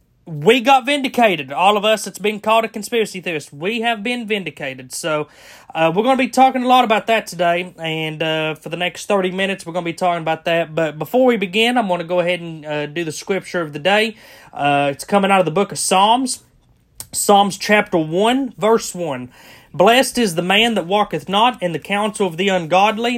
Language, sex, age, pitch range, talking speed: English, male, 30-49, 165-210 Hz, 225 wpm